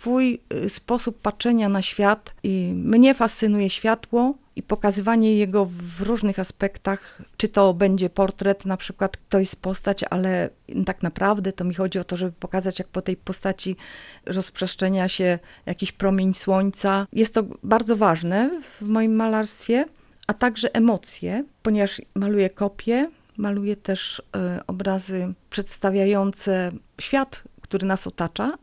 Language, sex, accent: Polish, female, native